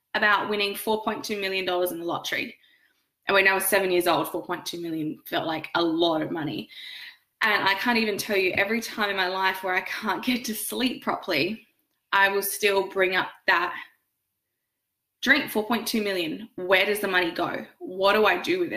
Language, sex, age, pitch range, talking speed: English, female, 20-39, 185-230 Hz, 190 wpm